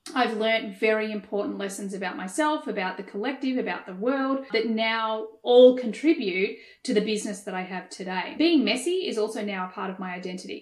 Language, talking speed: English, 190 wpm